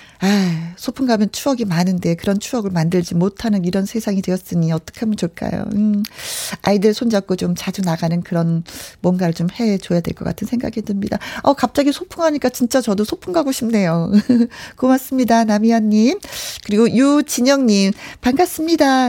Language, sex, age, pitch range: Korean, female, 40-59, 185-255 Hz